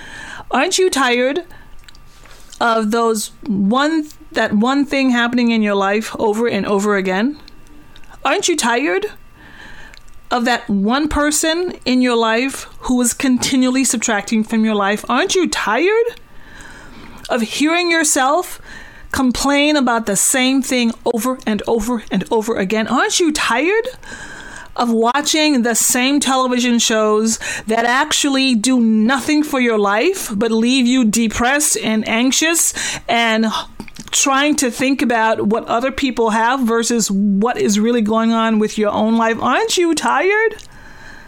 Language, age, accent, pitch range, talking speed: English, 30-49, American, 220-285 Hz, 140 wpm